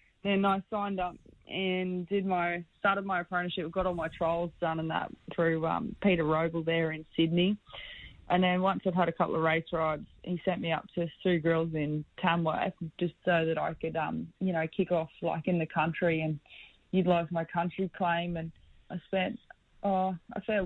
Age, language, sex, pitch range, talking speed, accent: 20-39, English, female, 165-185 Hz, 200 wpm, Australian